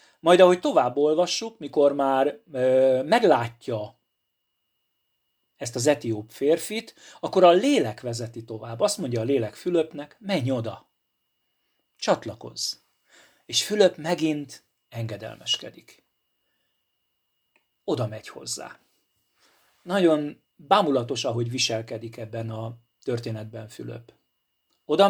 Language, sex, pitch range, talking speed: Hungarian, male, 115-155 Hz, 100 wpm